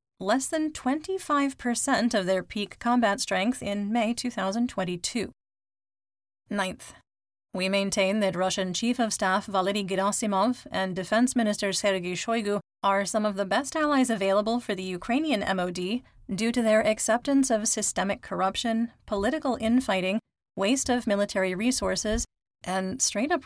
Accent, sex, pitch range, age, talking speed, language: American, female, 190-235 Hz, 30-49, 135 wpm, English